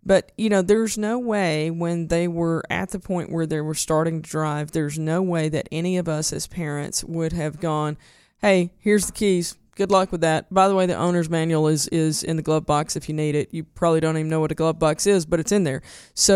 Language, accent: English, American